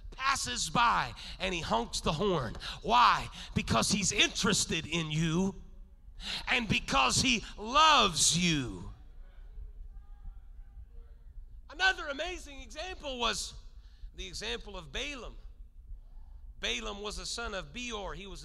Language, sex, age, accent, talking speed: English, male, 40-59, American, 110 wpm